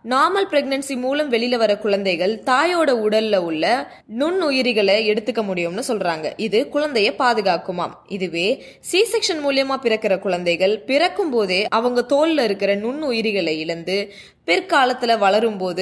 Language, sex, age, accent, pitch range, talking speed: Tamil, female, 20-39, native, 195-270 Hz, 115 wpm